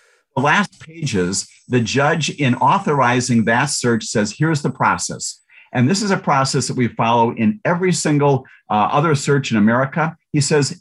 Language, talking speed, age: English, 170 wpm, 50-69